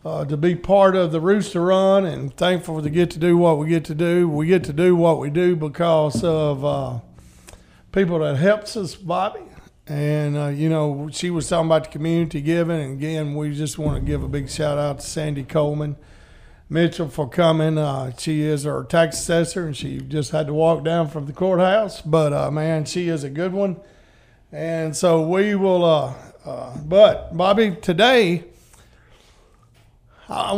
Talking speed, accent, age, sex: 185 wpm, American, 50-69, male